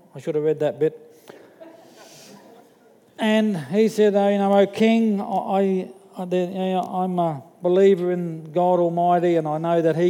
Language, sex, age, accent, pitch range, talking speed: English, male, 50-69, Australian, 175-215 Hz, 160 wpm